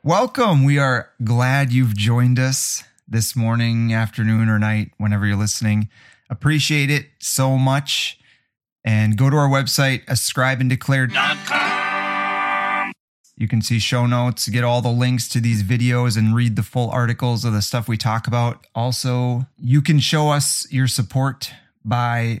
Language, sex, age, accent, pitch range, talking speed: English, male, 30-49, American, 110-130 Hz, 150 wpm